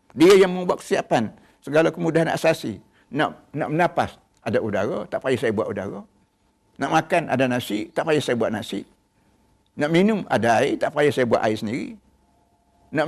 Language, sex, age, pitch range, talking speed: Malay, male, 60-79, 110-165 Hz, 175 wpm